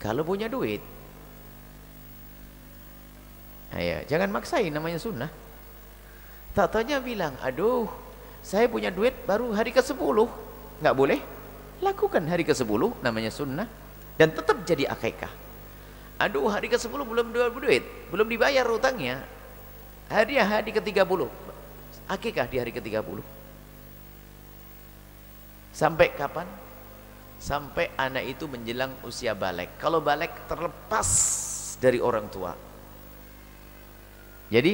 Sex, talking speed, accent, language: male, 105 wpm, native, Indonesian